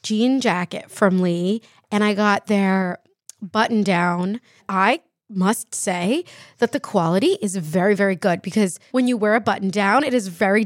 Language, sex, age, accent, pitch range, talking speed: English, female, 20-39, American, 195-255 Hz, 170 wpm